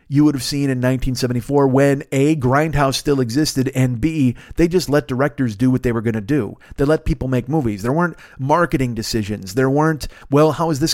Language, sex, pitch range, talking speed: English, male, 115-150 Hz, 215 wpm